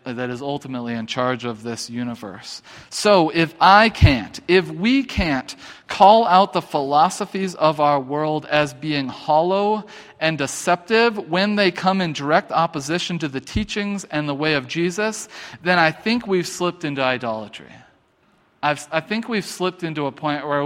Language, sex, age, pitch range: English, male, 40-59, 130-170 Hz